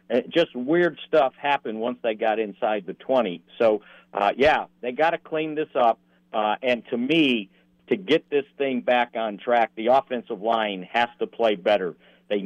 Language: English